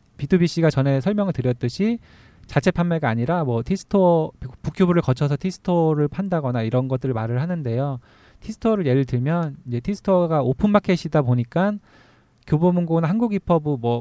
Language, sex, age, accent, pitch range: Korean, male, 20-39, native, 130-180 Hz